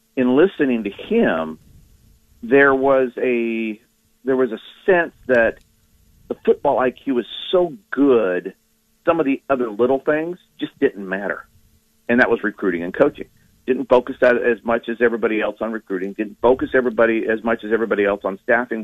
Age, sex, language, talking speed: 50-69, male, English, 170 wpm